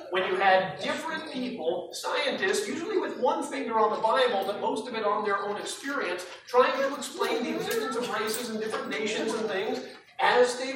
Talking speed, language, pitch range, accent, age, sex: 195 wpm, English, 225-315 Hz, American, 50-69, male